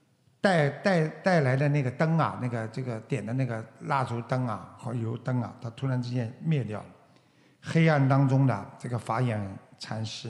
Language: Chinese